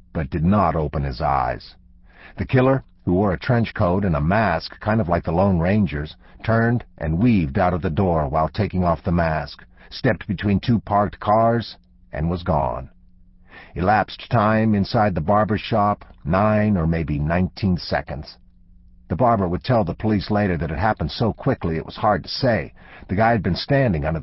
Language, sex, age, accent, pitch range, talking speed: English, male, 50-69, American, 85-105 Hz, 190 wpm